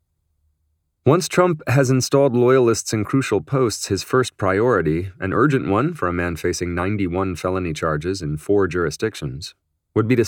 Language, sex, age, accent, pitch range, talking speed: English, male, 30-49, American, 85-110 Hz, 160 wpm